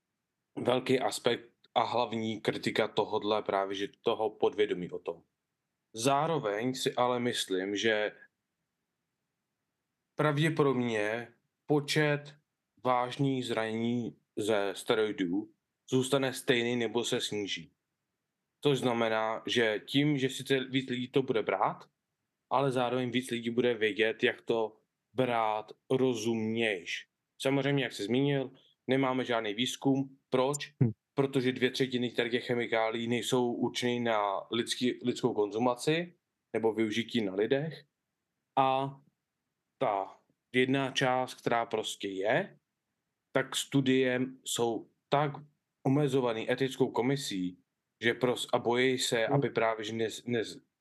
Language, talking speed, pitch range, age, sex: Czech, 115 wpm, 115-135 Hz, 20-39, male